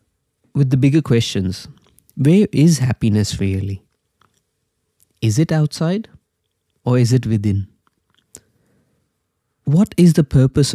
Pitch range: 110-145 Hz